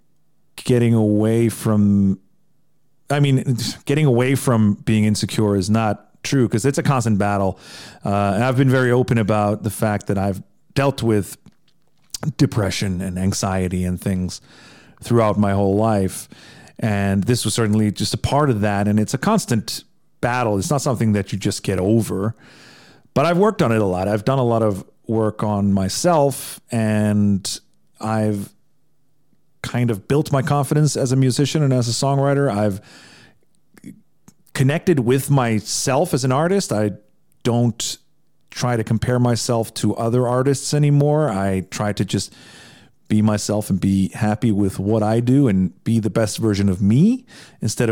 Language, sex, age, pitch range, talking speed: English, male, 40-59, 105-135 Hz, 160 wpm